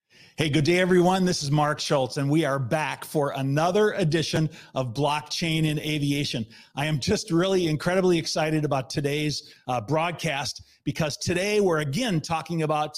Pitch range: 145-185 Hz